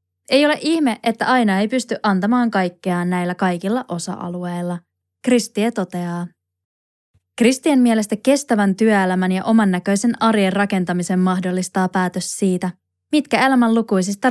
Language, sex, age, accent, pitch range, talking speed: Finnish, female, 20-39, native, 175-220 Hz, 120 wpm